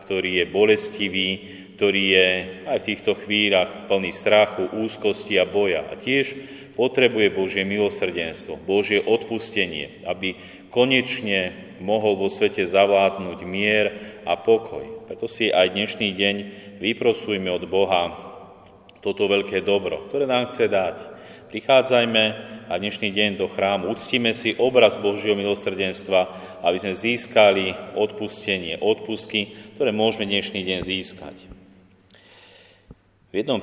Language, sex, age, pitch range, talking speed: Slovak, male, 30-49, 95-110 Hz, 120 wpm